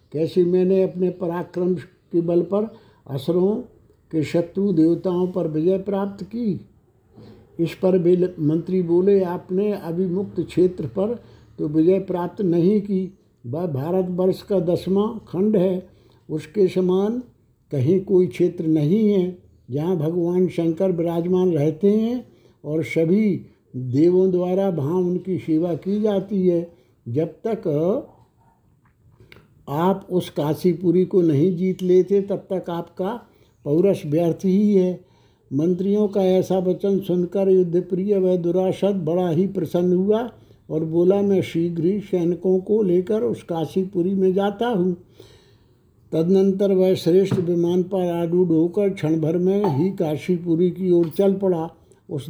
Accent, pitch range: native, 165-190 Hz